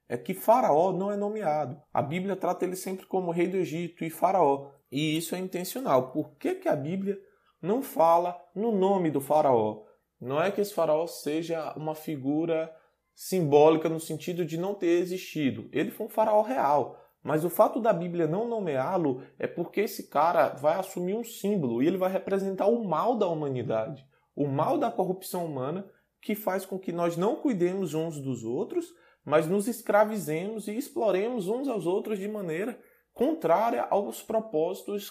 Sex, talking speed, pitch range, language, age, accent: male, 175 wpm, 160-205 Hz, Portuguese, 20-39, Brazilian